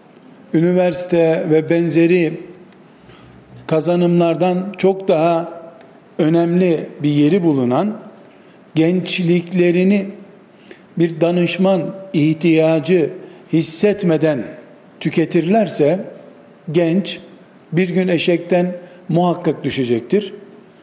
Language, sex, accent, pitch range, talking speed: Turkish, male, native, 165-195 Hz, 65 wpm